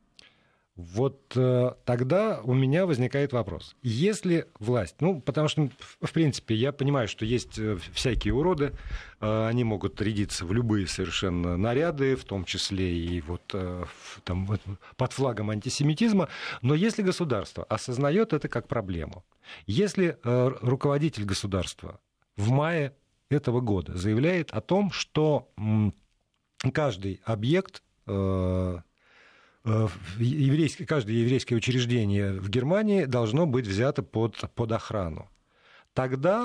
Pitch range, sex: 100-140 Hz, male